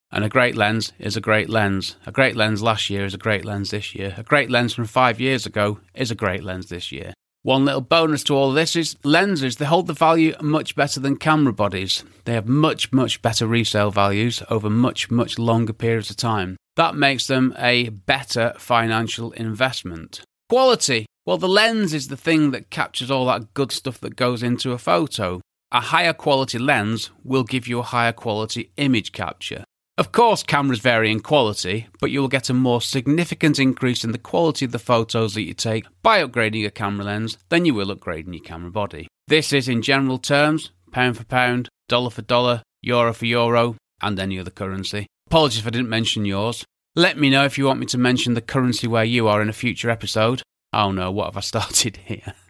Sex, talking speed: male, 210 wpm